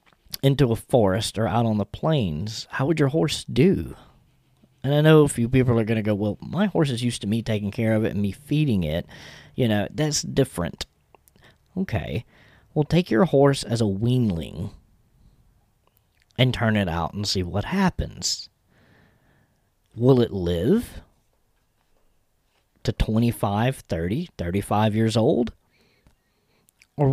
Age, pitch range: 40-59, 105-140 Hz